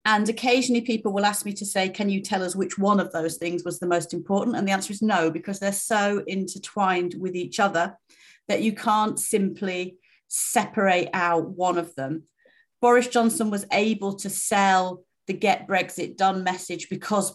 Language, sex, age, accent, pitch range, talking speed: English, female, 40-59, British, 170-200 Hz, 185 wpm